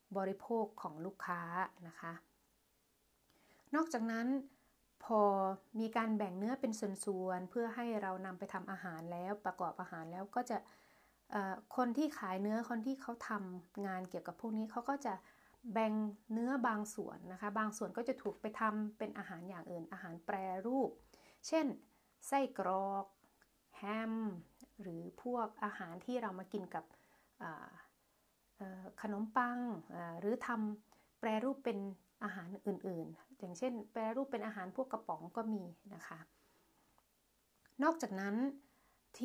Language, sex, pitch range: Thai, female, 195-235 Hz